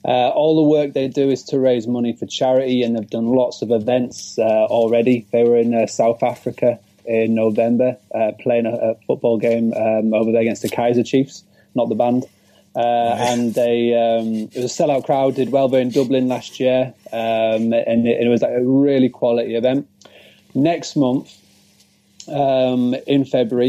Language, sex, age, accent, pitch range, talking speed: English, male, 20-39, British, 115-130 Hz, 190 wpm